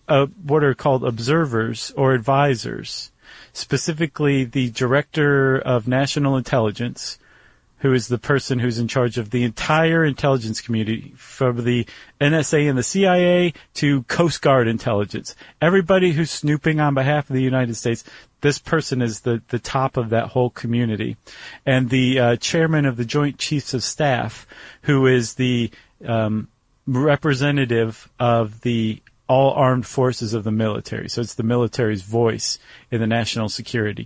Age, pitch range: 40-59, 120-145 Hz